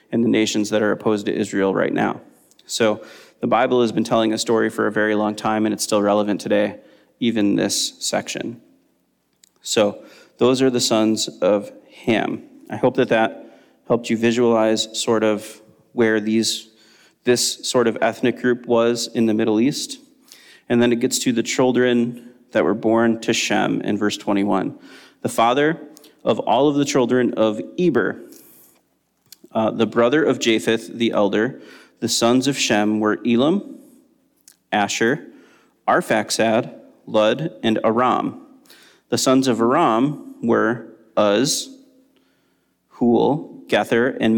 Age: 30-49